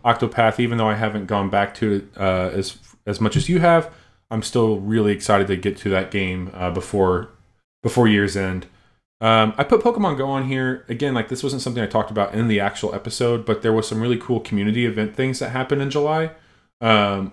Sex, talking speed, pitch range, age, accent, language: male, 220 wpm, 100-115 Hz, 20-39, American, English